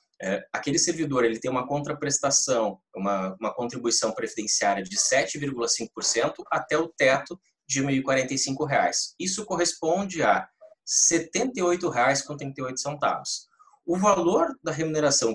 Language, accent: Portuguese, Brazilian